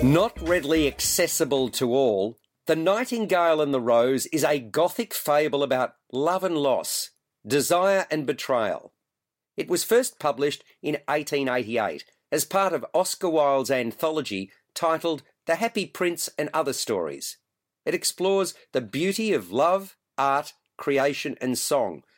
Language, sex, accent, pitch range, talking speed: English, male, Australian, 135-180 Hz, 135 wpm